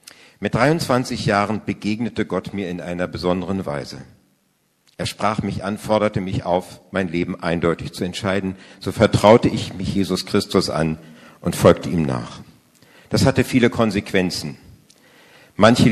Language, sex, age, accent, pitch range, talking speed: German, male, 50-69, German, 90-105 Hz, 145 wpm